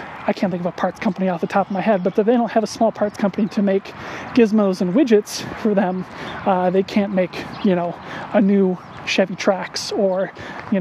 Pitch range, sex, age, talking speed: 185-210 Hz, male, 30-49, 220 wpm